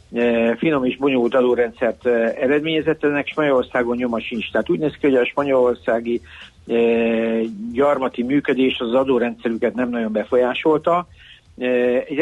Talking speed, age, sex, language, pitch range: 115 wpm, 50-69, male, Hungarian, 110-135 Hz